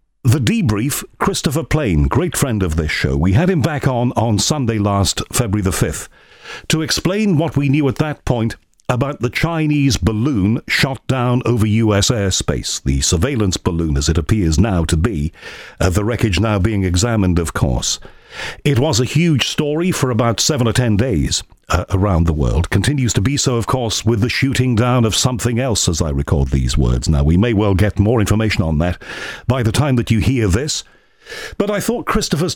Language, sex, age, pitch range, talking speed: English, male, 50-69, 100-140 Hz, 195 wpm